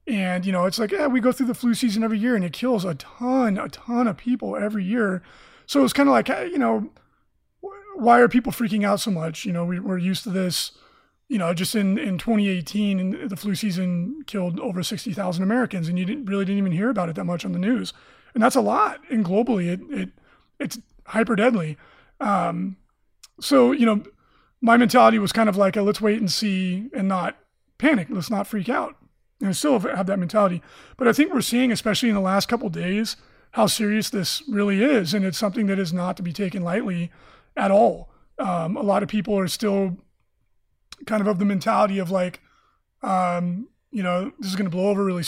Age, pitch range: 30-49, 190-235 Hz